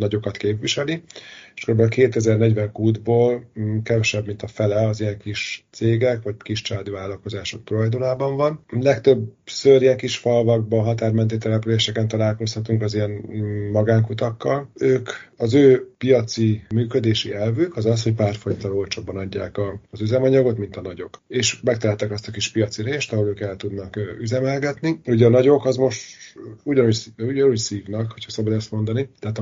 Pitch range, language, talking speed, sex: 105-120 Hz, Hungarian, 145 wpm, male